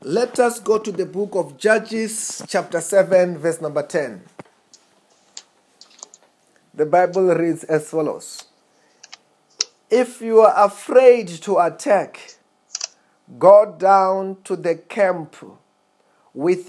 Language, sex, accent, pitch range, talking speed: English, male, South African, 175-225 Hz, 110 wpm